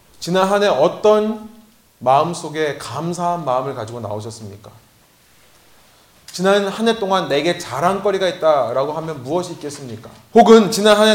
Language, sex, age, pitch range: Korean, male, 30-49, 140-215 Hz